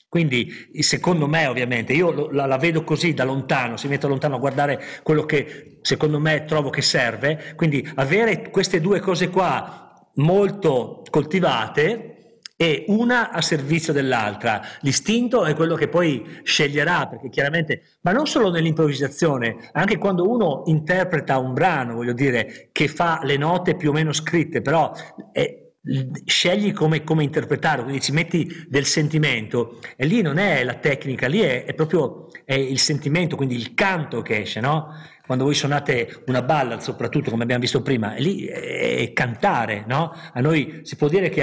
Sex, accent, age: male, native, 50-69